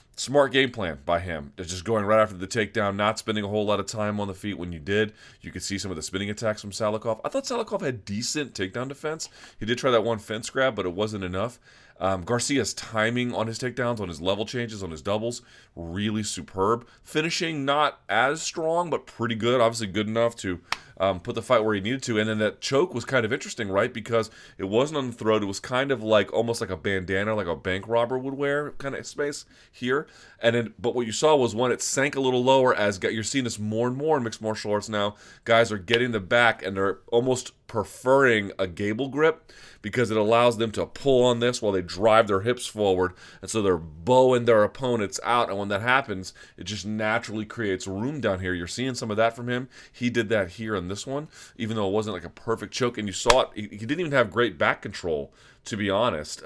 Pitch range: 100-120 Hz